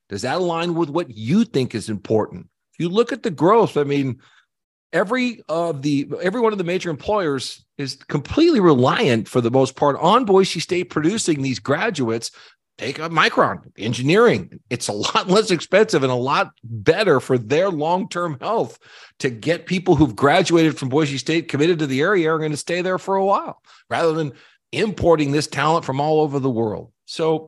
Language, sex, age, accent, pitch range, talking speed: English, male, 40-59, American, 140-190 Hz, 190 wpm